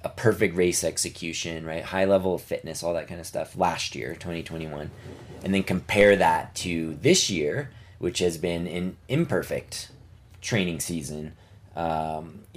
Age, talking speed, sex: 20-39, 155 wpm, male